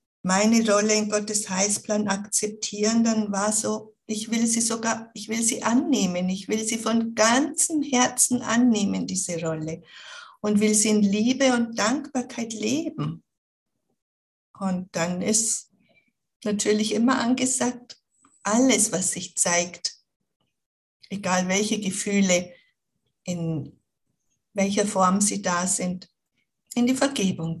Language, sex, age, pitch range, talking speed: German, female, 50-69, 200-235 Hz, 120 wpm